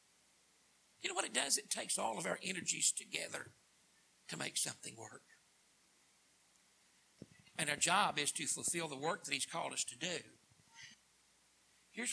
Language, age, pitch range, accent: English, 60-79, 175-255 Hz, American